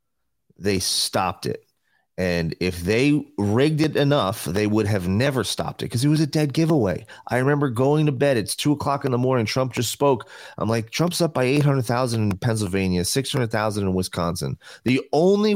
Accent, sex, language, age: American, male, English, 30-49